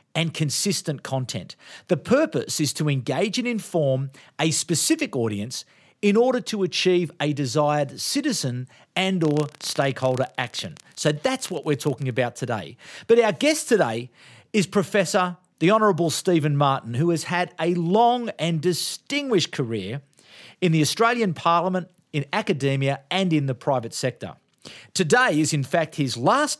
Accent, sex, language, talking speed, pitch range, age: Australian, male, English, 150 wpm, 135-185 Hz, 40-59